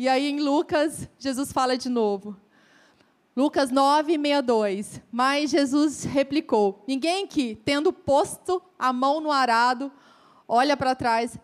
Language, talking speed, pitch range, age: Portuguese, 125 wpm, 245-360 Hz, 20-39